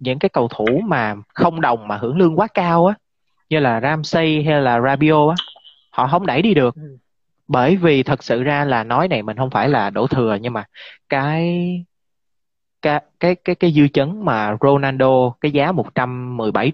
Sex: male